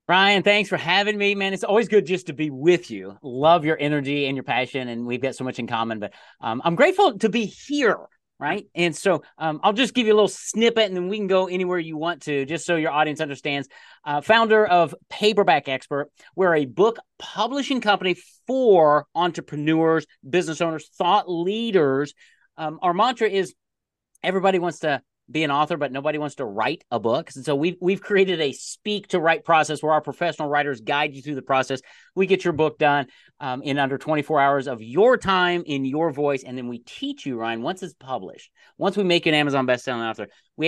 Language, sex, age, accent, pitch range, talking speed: English, male, 40-59, American, 140-190 Hz, 215 wpm